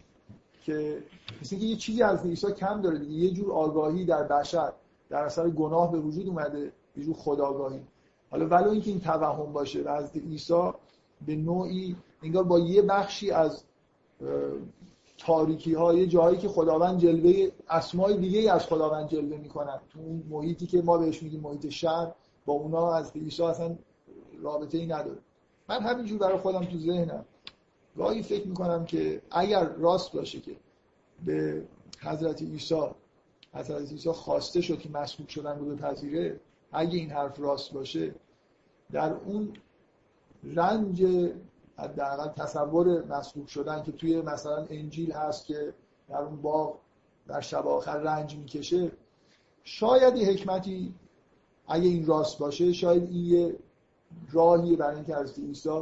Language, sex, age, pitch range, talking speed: Persian, male, 50-69, 150-175 Hz, 140 wpm